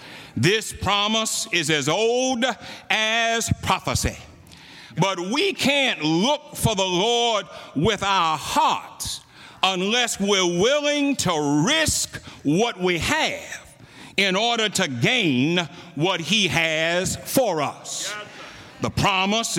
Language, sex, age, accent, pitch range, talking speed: English, male, 60-79, American, 175-235 Hz, 110 wpm